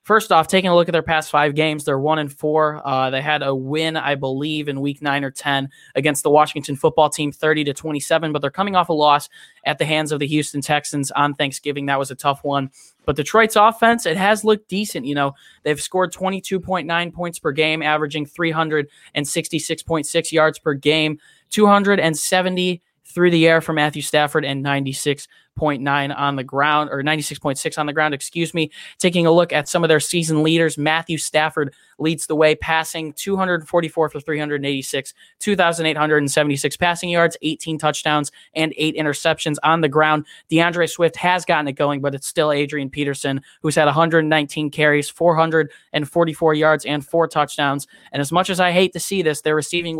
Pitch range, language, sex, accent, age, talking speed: 145-165 Hz, English, male, American, 20-39, 200 wpm